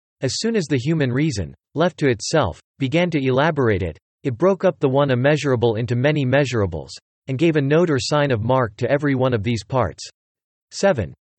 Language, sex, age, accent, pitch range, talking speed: English, male, 40-59, American, 120-150 Hz, 195 wpm